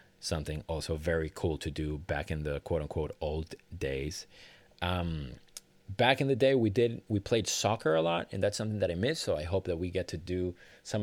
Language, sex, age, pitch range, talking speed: English, male, 30-49, 85-100 Hz, 220 wpm